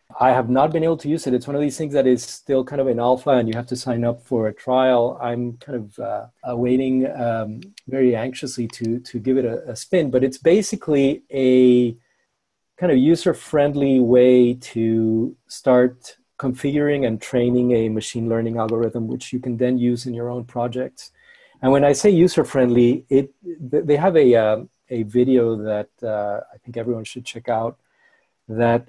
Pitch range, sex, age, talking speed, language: 115-135 Hz, male, 40-59, 190 wpm, English